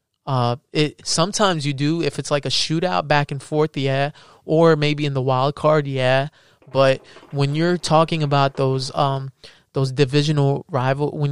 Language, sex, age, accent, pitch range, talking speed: English, male, 20-39, American, 135-150 Hz, 170 wpm